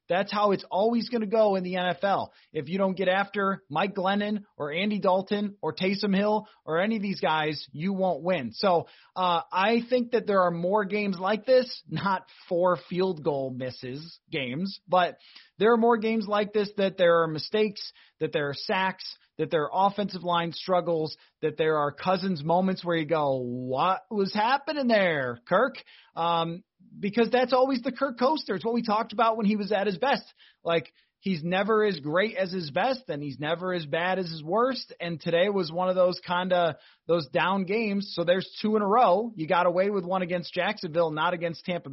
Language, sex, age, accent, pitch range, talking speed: English, male, 30-49, American, 170-210 Hz, 205 wpm